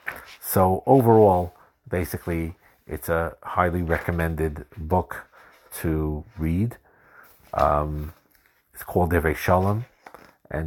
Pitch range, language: 80-95 Hz, English